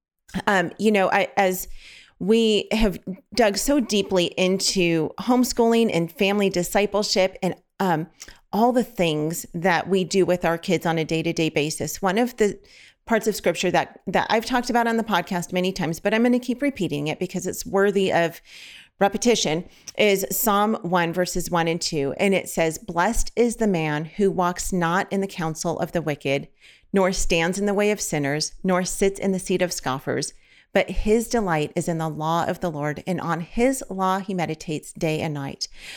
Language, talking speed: English, 190 wpm